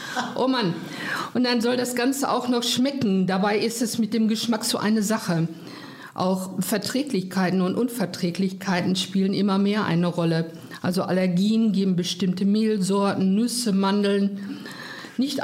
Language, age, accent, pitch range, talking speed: German, 50-69, German, 180-220 Hz, 140 wpm